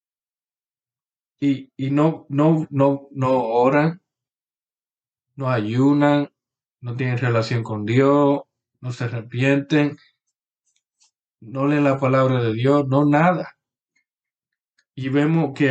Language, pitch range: English, 125-155 Hz